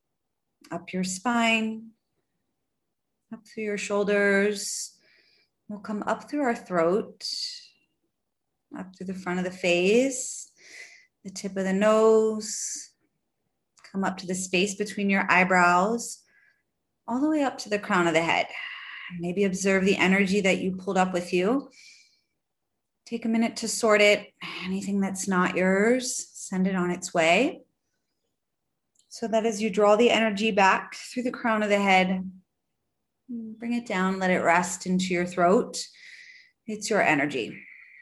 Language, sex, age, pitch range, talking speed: English, female, 30-49, 185-240 Hz, 150 wpm